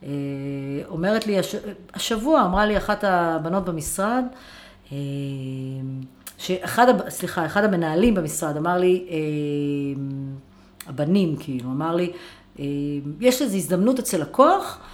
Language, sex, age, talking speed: Hebrew, female, 40-59, 105 wpm